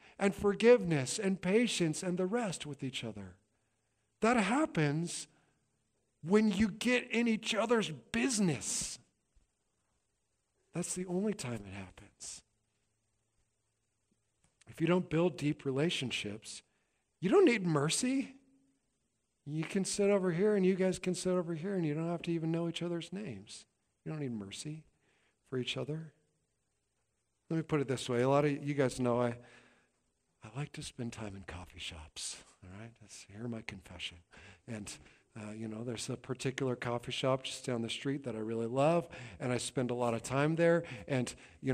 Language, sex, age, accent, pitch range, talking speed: English, male, 50-69, American, 120-170 Hz, 170 wpm